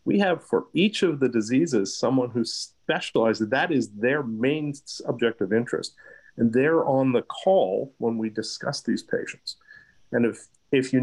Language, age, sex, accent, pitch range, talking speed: English, 50-69, male, American, 115-160 Hz, 170 wpm